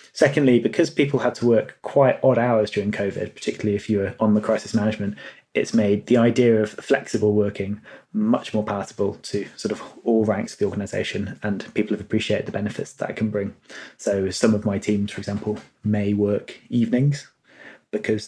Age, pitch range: 20-39, 105-115 Hz